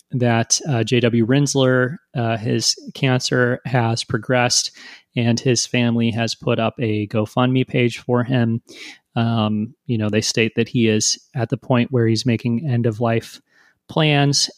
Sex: male